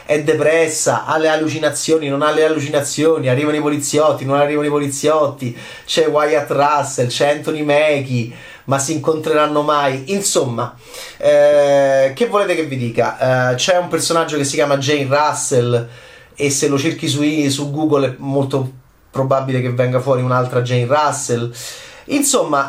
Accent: native